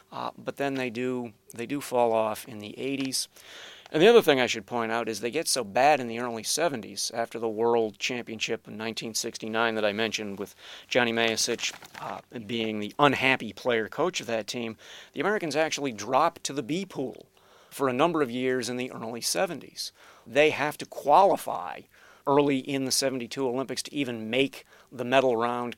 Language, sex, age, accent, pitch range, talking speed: English, male, 40-59, American, 120-140 Hz, 190 wpm